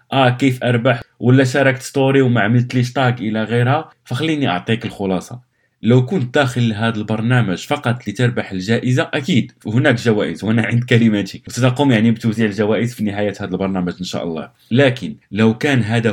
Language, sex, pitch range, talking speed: Arabic, male, 105-125 Hz, 155 wpm